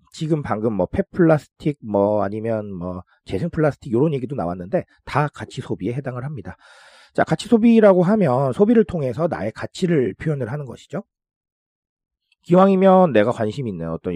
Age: 40-59